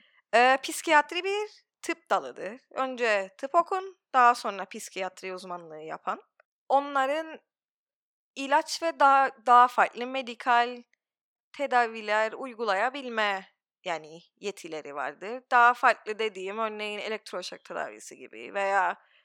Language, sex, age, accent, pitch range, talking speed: Turkish, female, 20-39, native, 195-300 Hz, 100 wpm